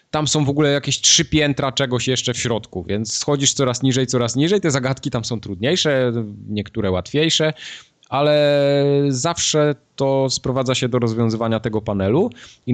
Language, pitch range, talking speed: Polish, 105-140 Hz, 160 wpm